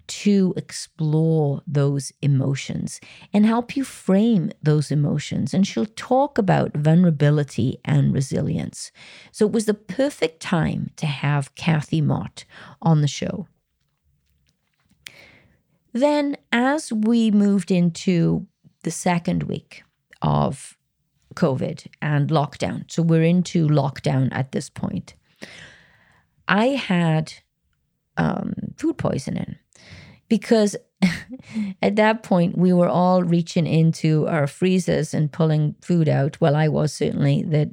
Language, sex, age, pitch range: English, female, 40-59, 150-190 Hz